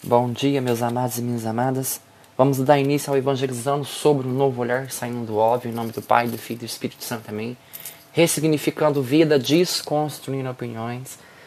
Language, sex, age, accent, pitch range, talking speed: Portuguese, male, 20-39, Brazilian, 125-165 Hz, 185 wpm